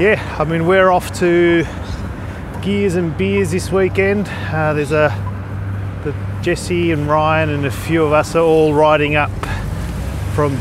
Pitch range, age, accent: 110-150 Hz, 30-49, Australian